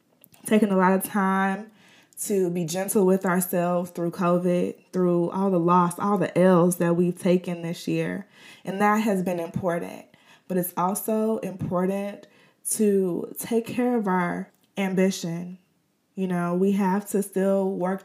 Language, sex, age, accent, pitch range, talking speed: English, female, 20-39, American, 175-215 Hz, 155 wpm